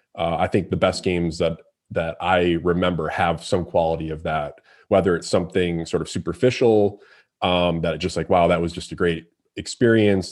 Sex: male